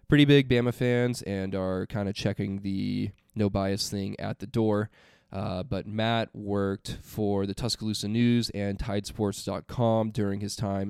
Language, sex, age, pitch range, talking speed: English, male, 20-39, 100-115 Hz, 160 wpm